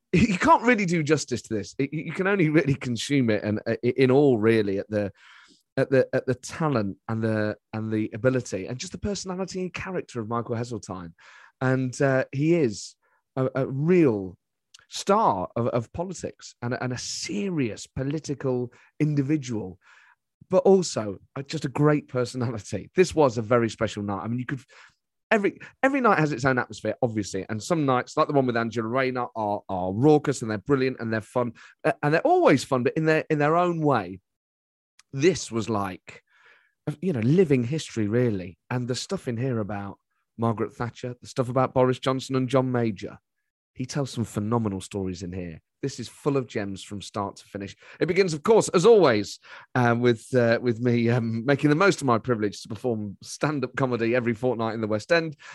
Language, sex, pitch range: English, male, 110-145 Hz